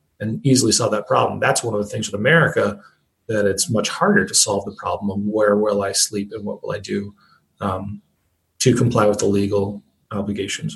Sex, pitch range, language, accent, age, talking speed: male, 100-125 Hz, English, American, 30-49, 205 wpm